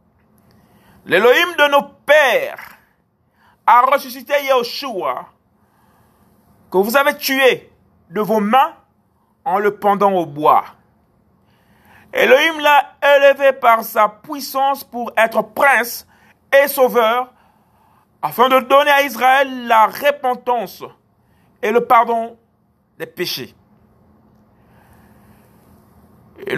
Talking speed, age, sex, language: 95 wpm, 50-69, male, French